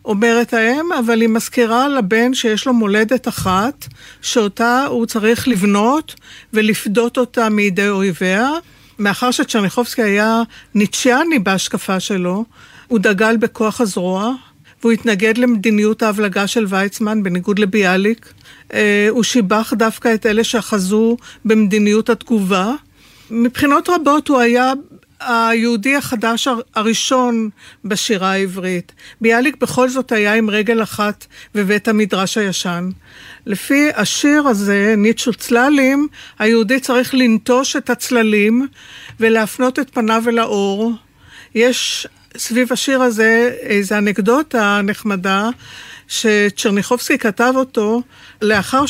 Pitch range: 210-250 Hz